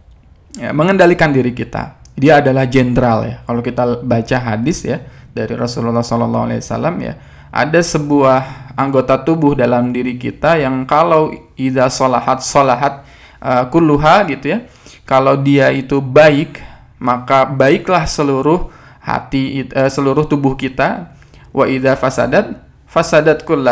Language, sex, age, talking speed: Indonesian, male, 20-39, 115 wpm